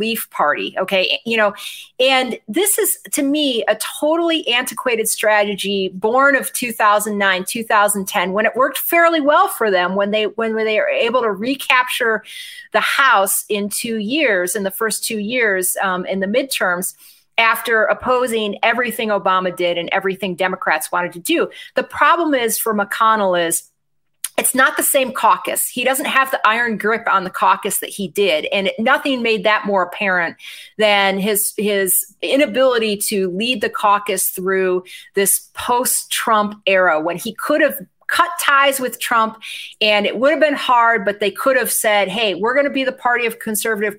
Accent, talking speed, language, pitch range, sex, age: American, 175 wpm, English, 200-255 Hz, female, 30-49